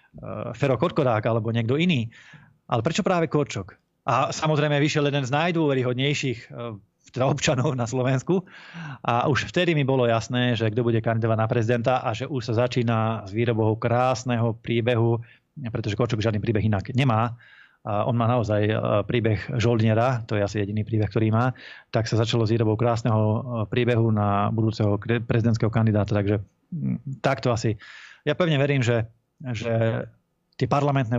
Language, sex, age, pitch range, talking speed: Slovak, male, 20-39, 110-130 Hz, 150 wpm